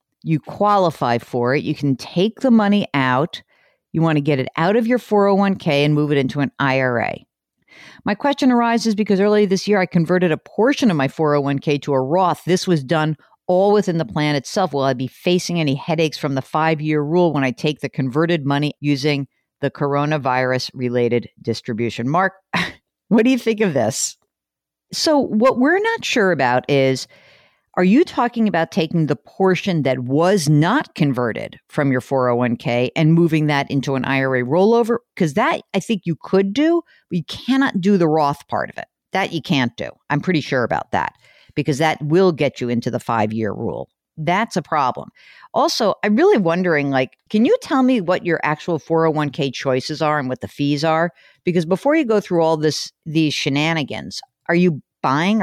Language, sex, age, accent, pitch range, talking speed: English, female, 50-69, American, 140-200 Hz, 190 wpm